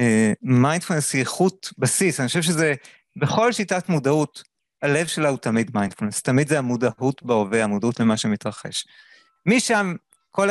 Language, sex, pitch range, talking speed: Hebrew, male, 130-175 Hz, 135 wpm